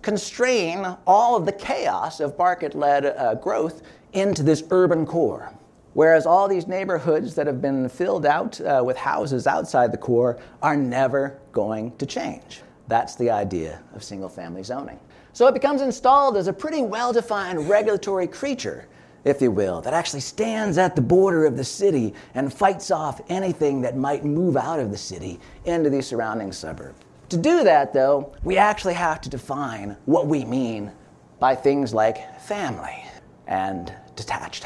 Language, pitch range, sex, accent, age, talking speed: English, 135-195 Hz, male, American, 40-59, 160 wpm